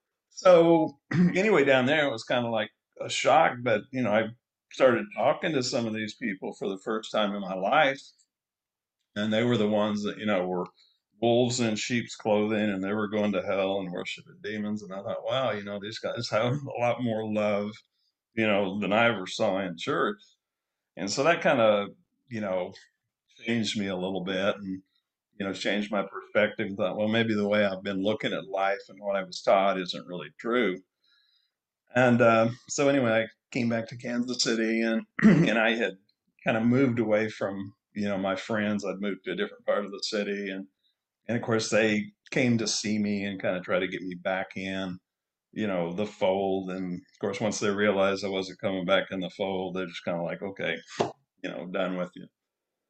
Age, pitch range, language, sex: 50-69, 100-120 Hz, English, male